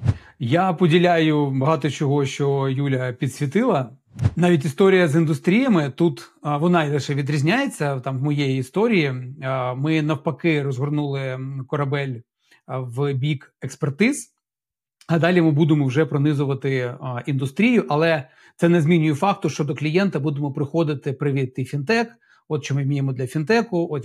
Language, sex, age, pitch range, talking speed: Ukrainian, male, 40-59, 140-175 Hz, 130 wpm